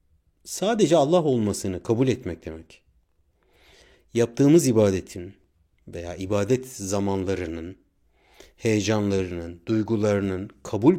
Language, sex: Turkish, male